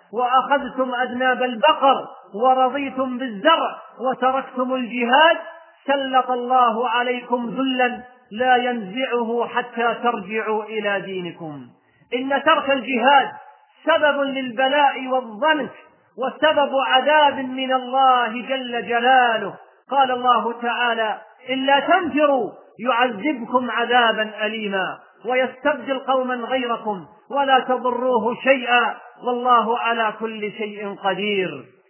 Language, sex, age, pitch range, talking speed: Arabic, male, 40-59, 225-265 Hz, 90 wpm